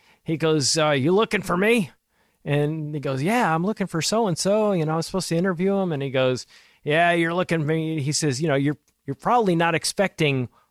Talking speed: 235 wpm